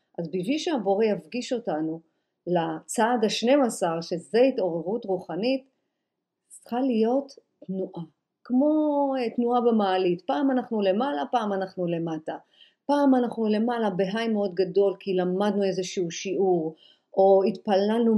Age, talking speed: 50-69, 115 wpm